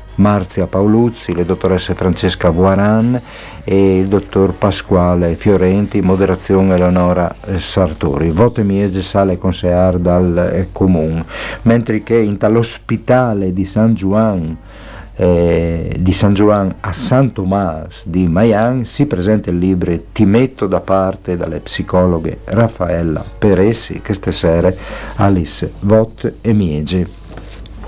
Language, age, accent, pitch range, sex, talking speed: Italian, 50-69, native, 90-105 Hz, male, 125 wpm